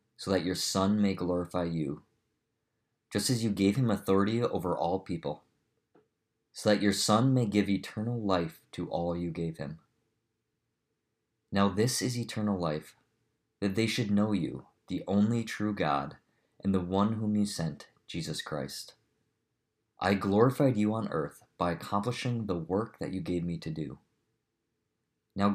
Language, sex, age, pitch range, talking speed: English, male, 20-39, 90-110 Hz, 155 wpm